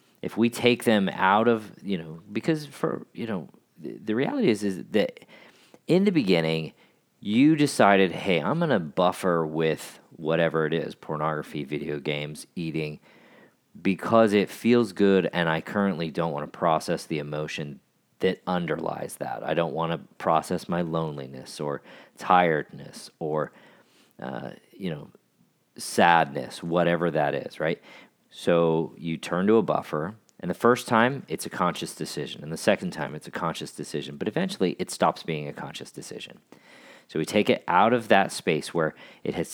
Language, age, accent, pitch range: English, 40-59, American, 80-105 Hz